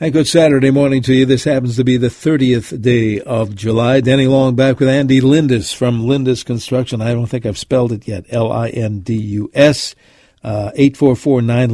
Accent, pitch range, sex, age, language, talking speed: American, 110-135 Hz, male, 60-79, English, 170 wpm